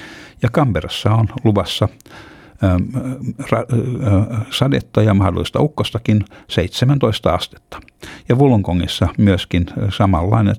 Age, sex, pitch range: 60-79, male, 90-110 Hz